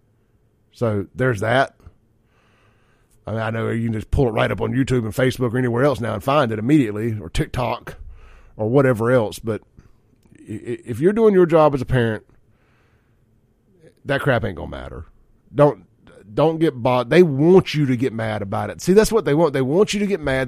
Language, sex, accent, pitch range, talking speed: English, male, American, 110-150 Hz, 200 wpm